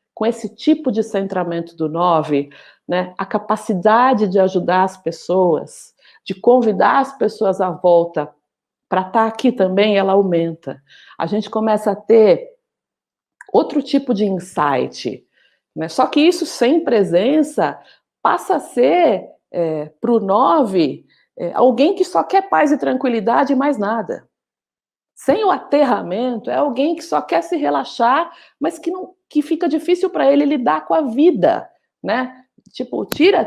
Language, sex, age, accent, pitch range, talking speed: Portuguese, female, 50-69, Brazilian, 195-285 Hz, 145 wpm